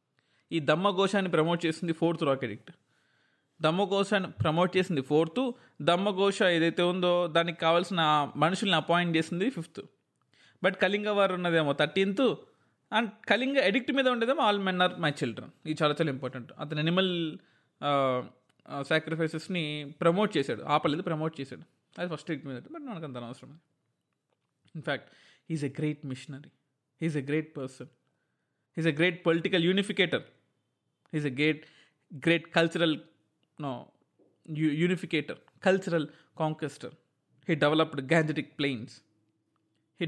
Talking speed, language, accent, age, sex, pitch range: 125 wpm, Telugu, native, 20-39, male, 150-185 Hz